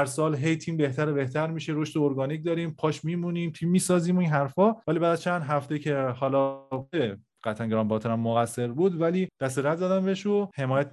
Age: 30-49